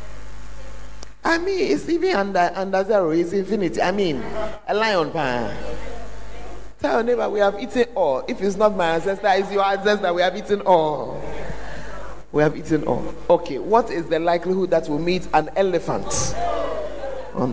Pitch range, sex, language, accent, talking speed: 160-245 Hz, male, English, Nigerian, 165 wpm